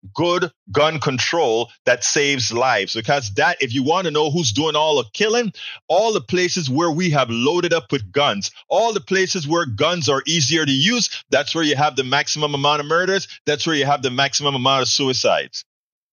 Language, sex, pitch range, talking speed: English, male, 135-180 Hz, 205 wpm